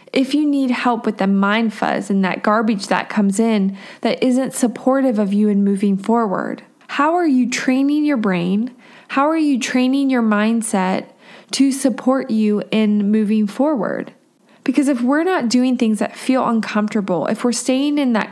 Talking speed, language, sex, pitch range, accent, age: 175 wpm, English, female, 210-260 Hz, American, 20-39